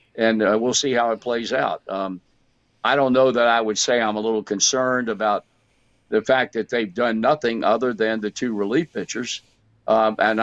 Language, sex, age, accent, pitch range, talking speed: English, male, 60-79, American, 110-130 Hz, 200 wpm